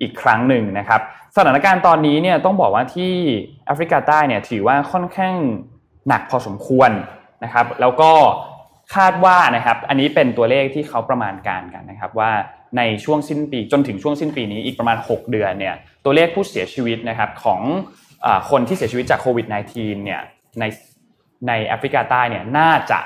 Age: 20-39